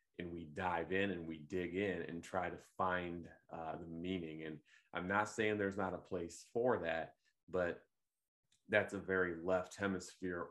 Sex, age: male, 30-49